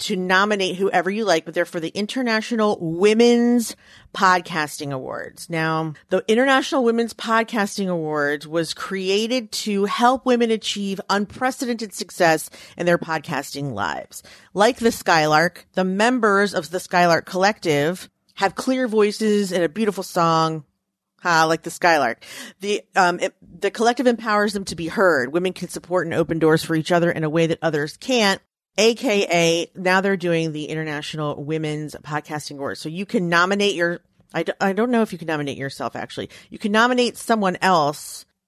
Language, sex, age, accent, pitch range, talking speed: English, female, 40-59, American, 165-215 Hz, 160 wpm